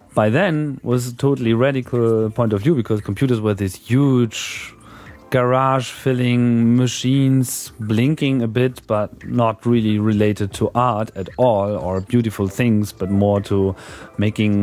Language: German